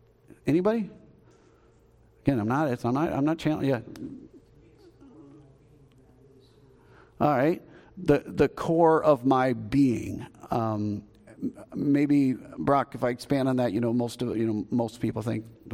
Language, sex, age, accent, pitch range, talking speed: English, male, 40-59, American, 115-145 Hz, 140 wpm